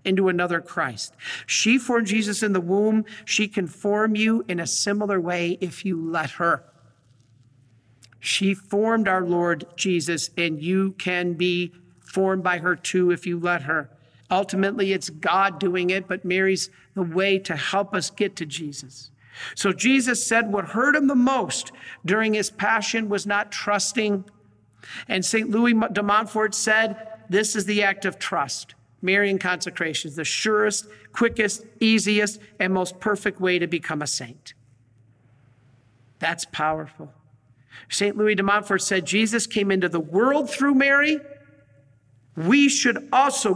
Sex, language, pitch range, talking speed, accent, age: male, English, 160-220 Hz, 155 wpm, American, 50-69